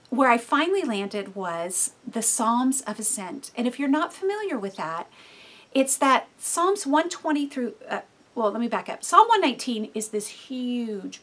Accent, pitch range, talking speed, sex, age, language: American, 215-290 Hz, 170 wpm, female, 40-59, English